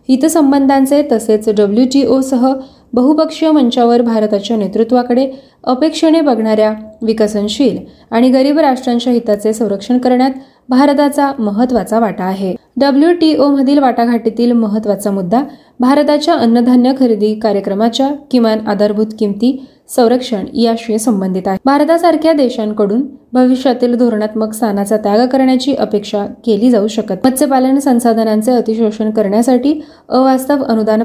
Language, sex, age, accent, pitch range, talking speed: Marathi, female, 20-39, native, 215-265 Hz, 105 wpm